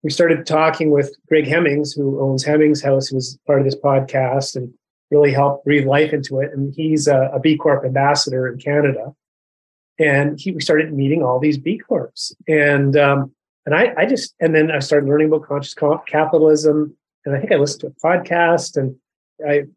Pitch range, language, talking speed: 135-160 Hz, English, 200 wpm